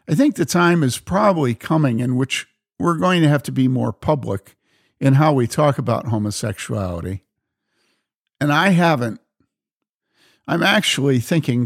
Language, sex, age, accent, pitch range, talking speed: English, male, 50-69, American, 120-155 Hz, 150 wpm